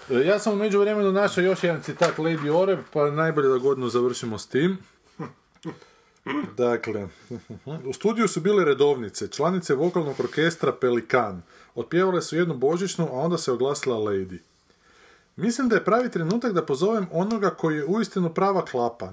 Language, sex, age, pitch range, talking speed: Croatian, male, 30-49, 130-195 Hz, 155 wpm